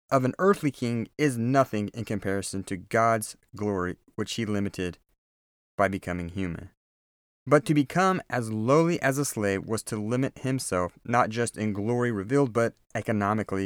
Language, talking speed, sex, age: English, 160 wpm, male, 30-49